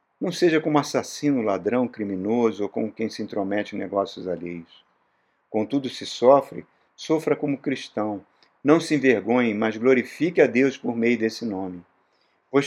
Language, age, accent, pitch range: Portuguese, 50-69, Brazilian, 105-145 Hz